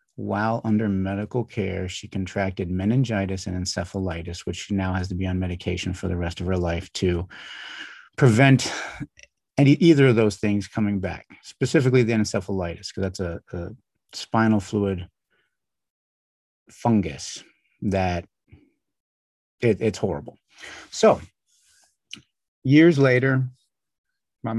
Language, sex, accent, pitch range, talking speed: English, male, American, 95-120 Hz, 120 wpm